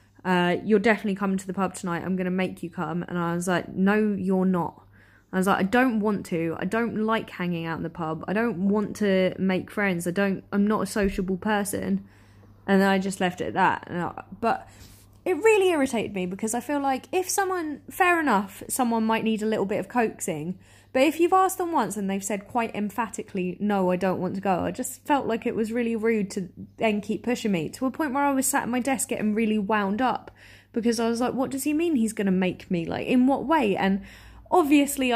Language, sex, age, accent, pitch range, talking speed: English, female, 20-39, British, 185-240 Hz, 240 wpm